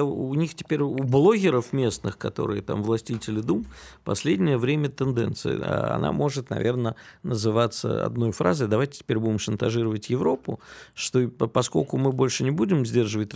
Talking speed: 140 wpm